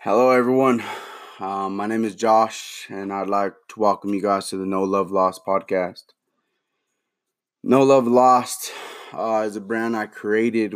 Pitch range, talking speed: 100-115 Hz, 160 wpm